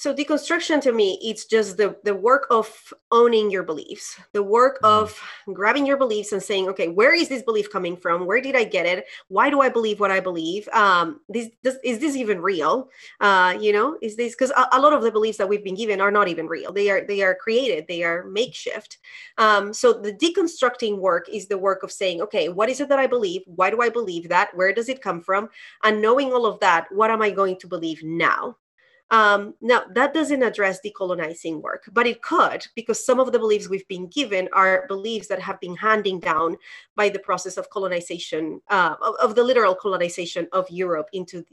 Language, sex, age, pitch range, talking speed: English, female, 30-49, 190-255 Hz, 215 wpm